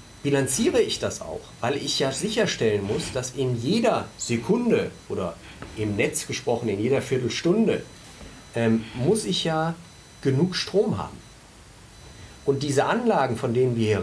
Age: 40-59